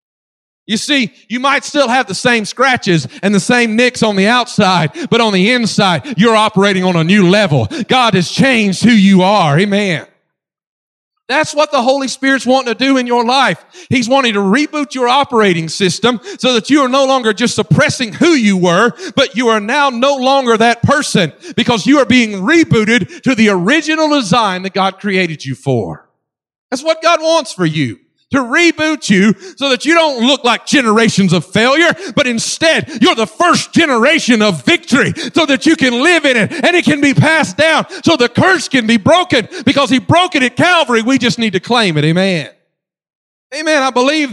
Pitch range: 195-275 Hz